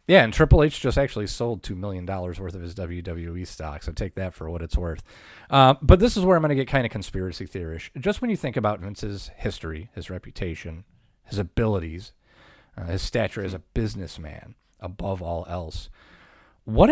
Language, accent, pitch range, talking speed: English, American, 90-115 Hz, 195 wpm